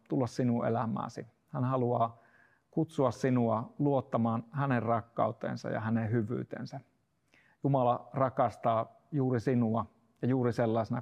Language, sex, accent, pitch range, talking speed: Finnish, male, native, 115-130 Hz, 110 wpm